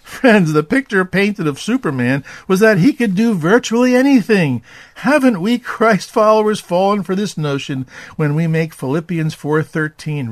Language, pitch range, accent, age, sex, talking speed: English, 145-210 Hz, American, 50-69, male, 150 wpm